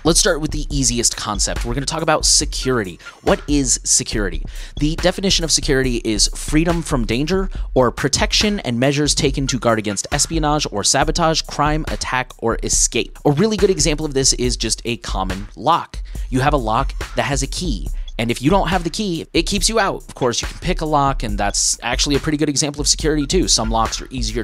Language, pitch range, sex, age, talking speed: English, 110-150 Hz, male, 30-49, 215 wpm